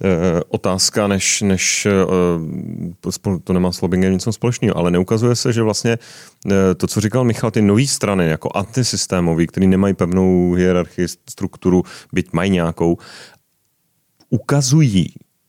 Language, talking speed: Czech, 140 wpm